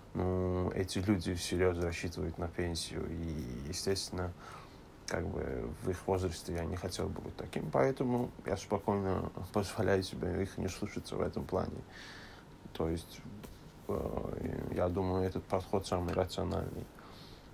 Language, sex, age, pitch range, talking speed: Russian, male, 20-39, 90-100 Hz, 130 wpm